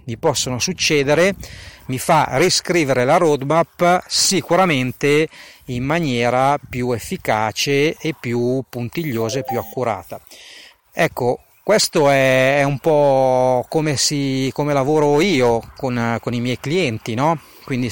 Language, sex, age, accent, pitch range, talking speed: Italian, male, 40-59, native, 125-165 Hz, 115 wpm